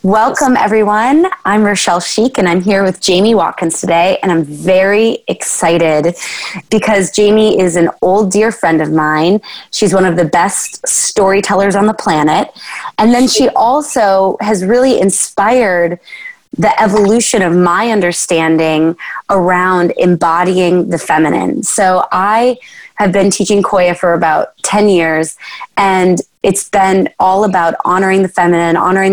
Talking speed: 140 wpm